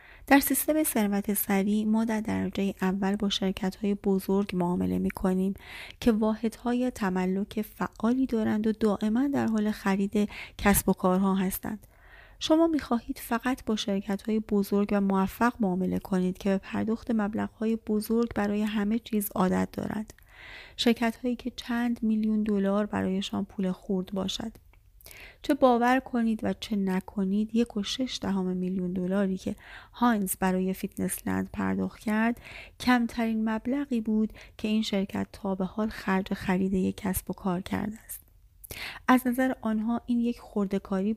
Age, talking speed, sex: 30-49, 145 wpm, female